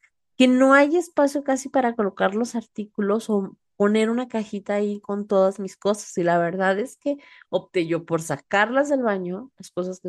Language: Spanish